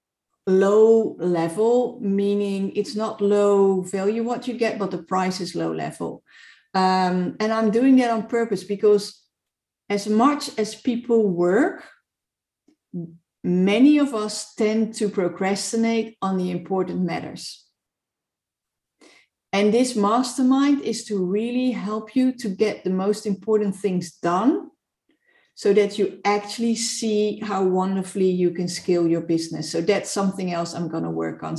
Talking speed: 140 wpm